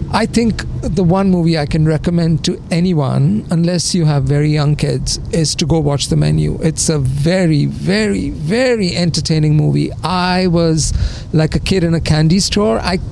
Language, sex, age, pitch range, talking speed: English, male, 50-69, 150-185 Hz, 180 wpm